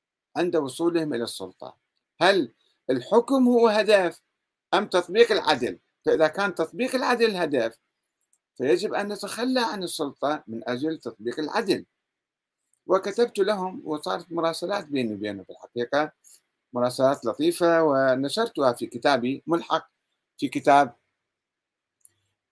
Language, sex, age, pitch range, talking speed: Arabic, male, 50-69, 125-190 Hz, 110 wpm